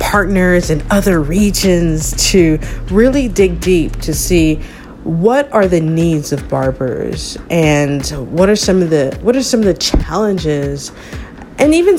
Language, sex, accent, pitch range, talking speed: English, female, American, 150-205 Hz, 150 wpm